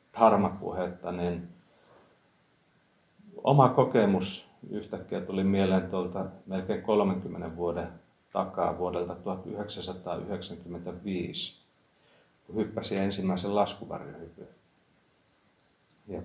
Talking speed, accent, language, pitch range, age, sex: 70 wpm, native, Finnish, 85-100 Hz, 30-49, male